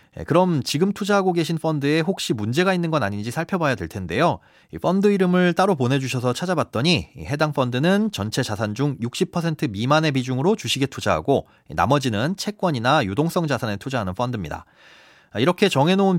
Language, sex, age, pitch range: Korean, male, 30-49, 125-170 Hz